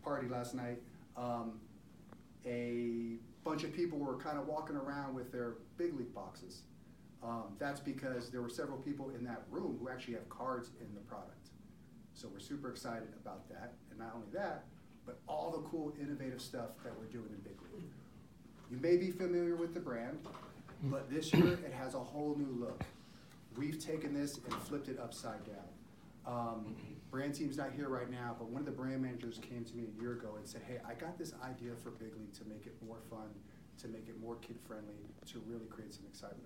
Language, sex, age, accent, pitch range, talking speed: English, male, 30-49, American, 115-145 Hz, 205 wpm